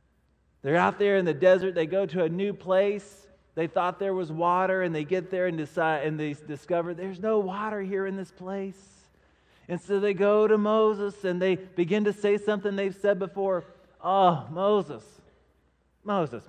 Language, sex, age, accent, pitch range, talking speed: English, male, 30-49, American, 130-195 Hz, 180 wpm